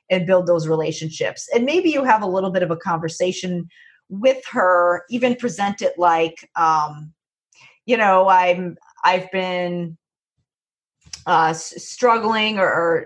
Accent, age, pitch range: American, 30-49, 170-215 Hz